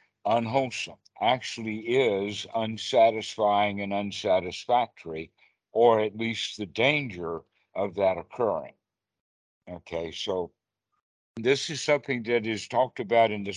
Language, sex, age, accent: English, male, 60-79, American